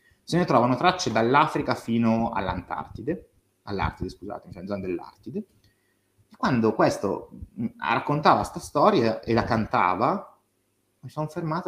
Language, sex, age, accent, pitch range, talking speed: Italian, male, 30-49, native, 100-145 Hz, 125 wpm